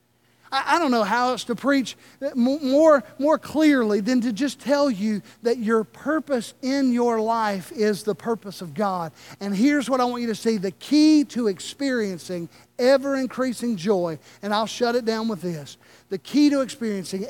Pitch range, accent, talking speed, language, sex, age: 185-235 Hz, American, 175 wpm, Italian, male, 50-69